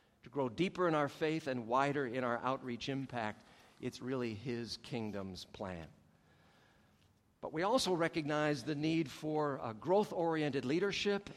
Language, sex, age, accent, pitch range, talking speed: English, male, 50-69, American, 135-170 Hz, 145 wpm